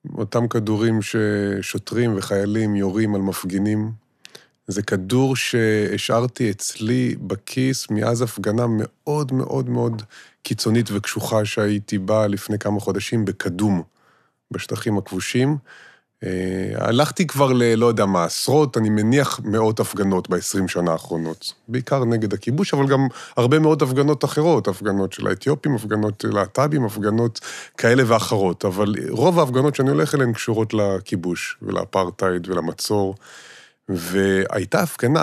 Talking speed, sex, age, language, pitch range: 120 wpm, male, 30-49, Hebrew, 100-125 Hz